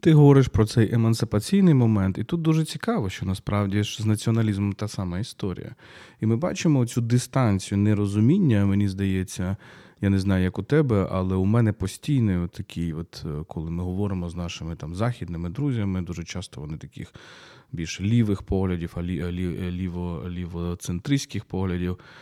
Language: Ukrainian